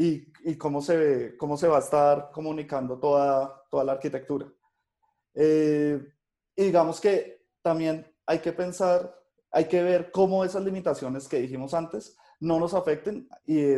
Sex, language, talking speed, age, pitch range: male, Spanish, 155 wpm, 20-39, 135-165 Hz